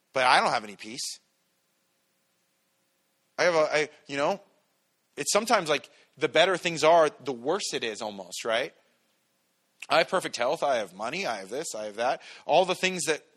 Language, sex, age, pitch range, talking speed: English, male, 30-49, 145-185 Hz, 190 wpm